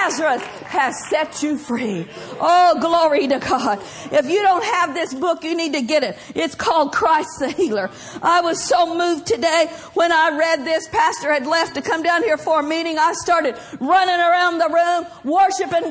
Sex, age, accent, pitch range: female, 50-69, American, 270-345 Hz